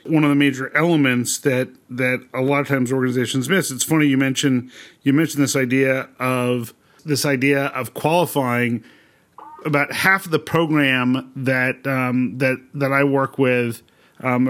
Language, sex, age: English, male, 40-59